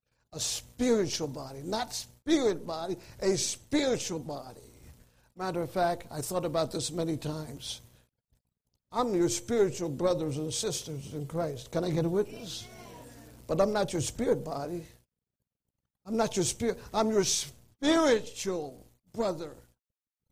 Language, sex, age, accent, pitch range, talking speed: English, male, 60-79, American, 145-185 Hz, 135 wpm